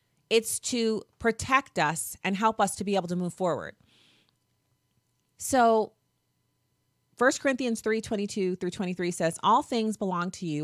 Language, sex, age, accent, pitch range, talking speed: English, female, 30-49, American, 160-220 Hz, 135 wpm